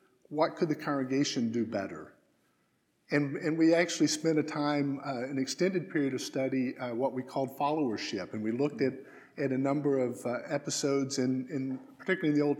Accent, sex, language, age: American, male, English, 50-69